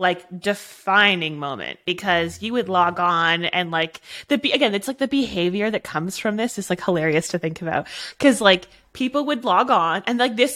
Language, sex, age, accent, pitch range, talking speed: English, female, 20-39, American, 180-240 Hz, 200 wpm